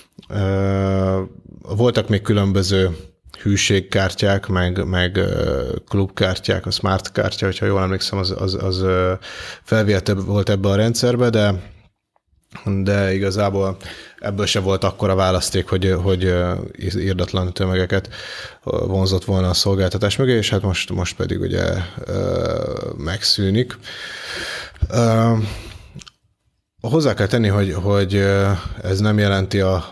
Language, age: Hungarian, 30-49